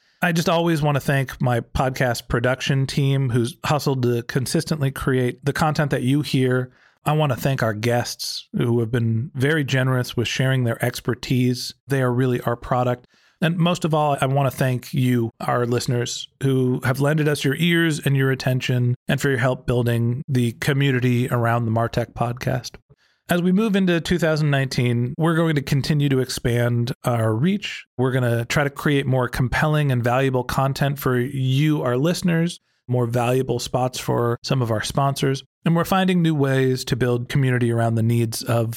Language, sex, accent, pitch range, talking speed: English, male, American, 120-145 Hz, 185 wpm